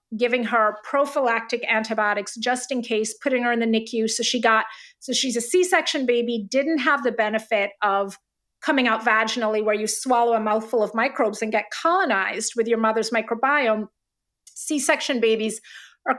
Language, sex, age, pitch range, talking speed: English, female, 30-49, 225-280 Hz, 175 wpm